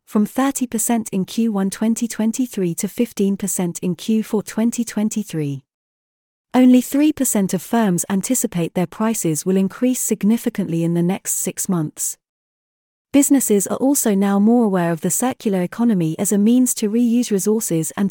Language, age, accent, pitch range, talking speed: English, 30-49, British, 175-230 Hz, 135 wpm